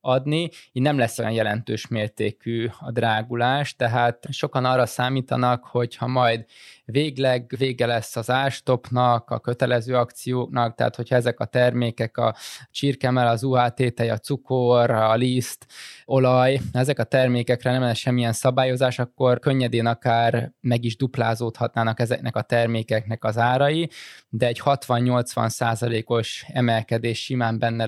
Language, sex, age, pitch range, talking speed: Hungarian, male, 20-39, 115-130 Hz, 130 wpm